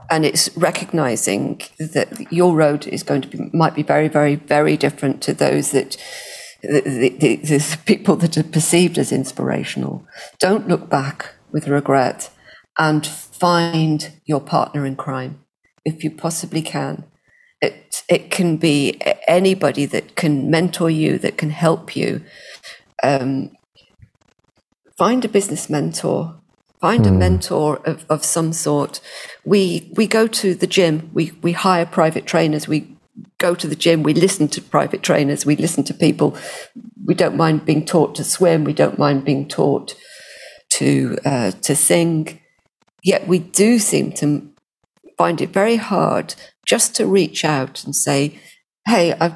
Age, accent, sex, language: 40-59, British, female, English